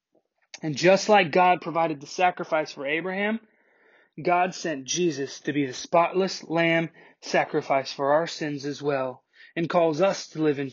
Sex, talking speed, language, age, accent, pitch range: male, 160 wpm, English, 20-39, American, 145-175 Hz